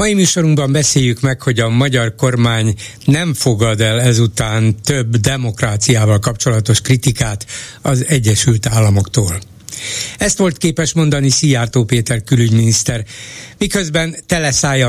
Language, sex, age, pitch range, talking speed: Hungarian, male, 60-79, 110-140 Hz, 115 wpm